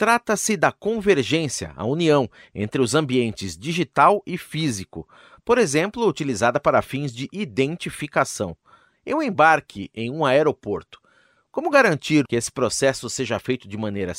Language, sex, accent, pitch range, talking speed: Portuguese, male, Brazilian, 115-170 Hz, 135 wpm